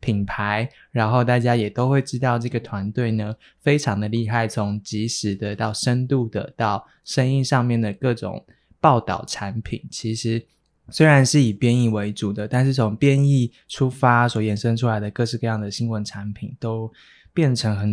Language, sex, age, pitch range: Chinese, male, 20-39, 105-130 Hz